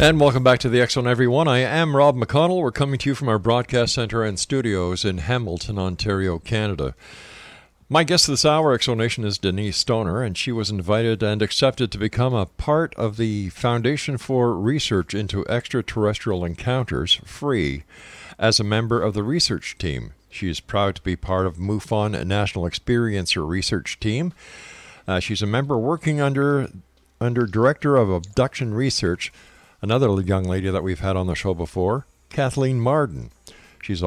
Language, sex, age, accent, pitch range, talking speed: English, male, 50-69, American, 100-130 Hz, 170 wpm